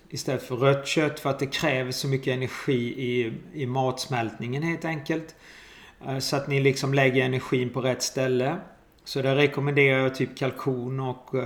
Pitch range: 135-155 Hz